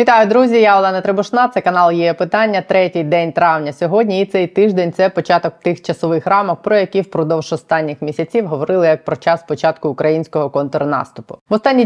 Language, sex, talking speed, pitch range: Ukrainian, female, 170 wpm, 155-180 Hz